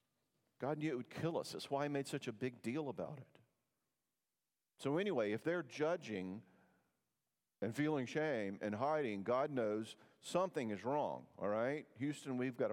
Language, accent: English, American